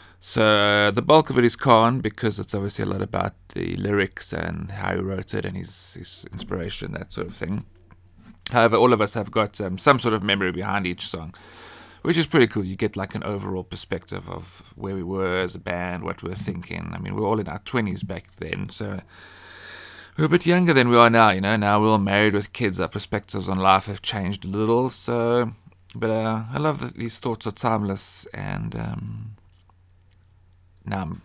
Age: 30-49